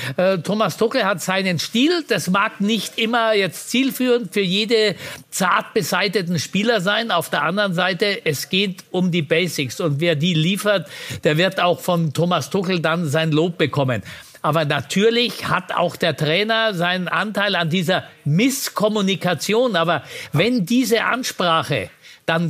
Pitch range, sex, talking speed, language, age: 160-210 Hz, male, 145 wpm, German, 50-69